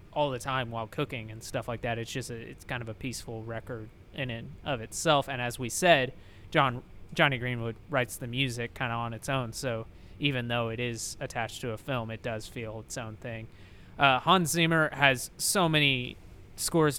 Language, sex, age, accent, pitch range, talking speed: English, male, 20-39, American, 115-140 Hz, 210 wpm